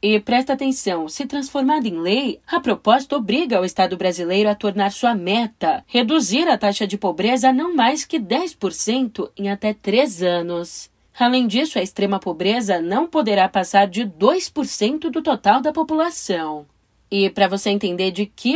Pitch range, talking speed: 190-260 Hz, 165 wpm